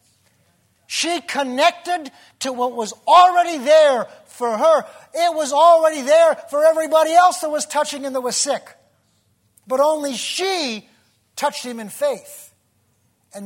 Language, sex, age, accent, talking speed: English, male, 50-69, American, 140 wpm